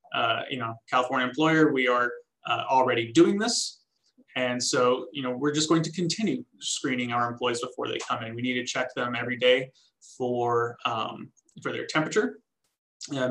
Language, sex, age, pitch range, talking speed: English, male, 20-39, 120-145 Hz, 180 wpm